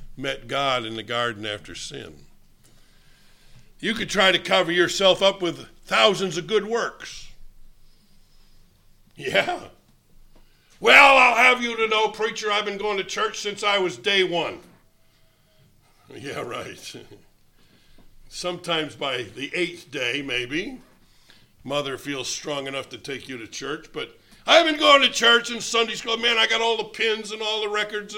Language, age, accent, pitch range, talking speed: English, 60-79, American, 155-215 Hz, 155 wpm